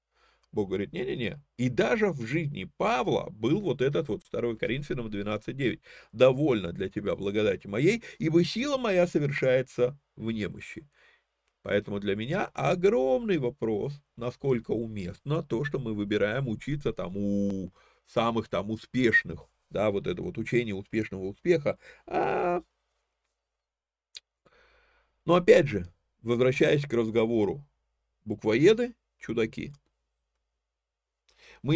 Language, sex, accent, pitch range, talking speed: Russian, male, native, 105-160 Hz, 110 wpm